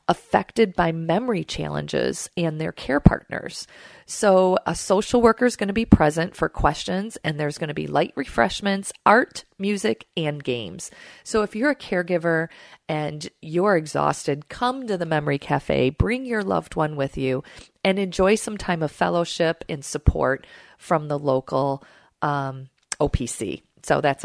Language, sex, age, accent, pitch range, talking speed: English, female, 40-59, American, 140-190 Hz, 160 wpm